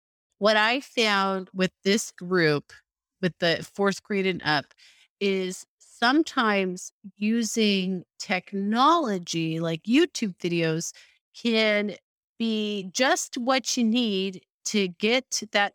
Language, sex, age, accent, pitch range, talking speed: English, female, 30-49, American, 190-235 Hz, 105 wpm